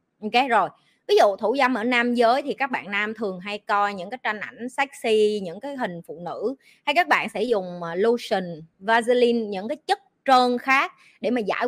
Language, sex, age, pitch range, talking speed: Vietnamese, female, 20-39, 190-250 Hz, 215 wpm